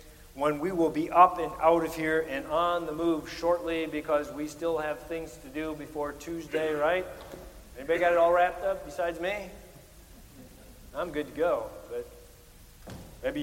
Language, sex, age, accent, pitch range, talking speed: English, male, 50-69, American, 155-210 Hz, 170 wpm